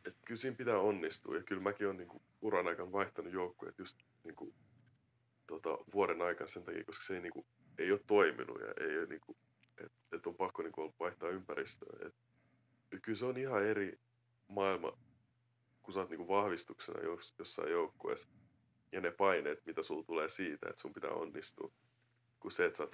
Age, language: 30-49, Finnish